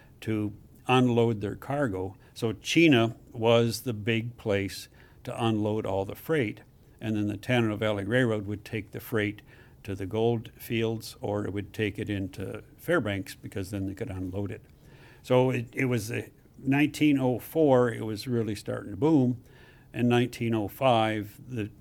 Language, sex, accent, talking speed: English, male, American, 155 wpm